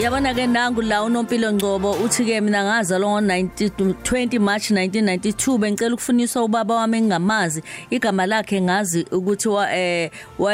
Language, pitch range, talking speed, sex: English, 185-225 Hz, 115 wpm, female